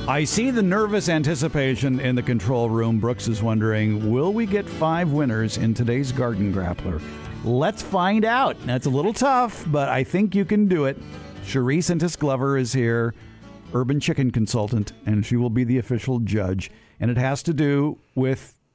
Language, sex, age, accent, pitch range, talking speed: English, male, 50-69, American, 120-180 Hz, 180 wpm